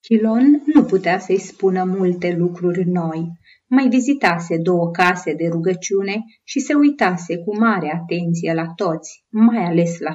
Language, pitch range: Romanian, 165-230 Hz